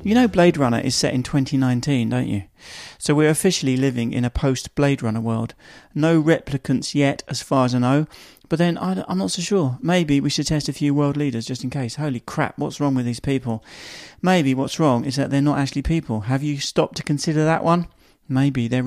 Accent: British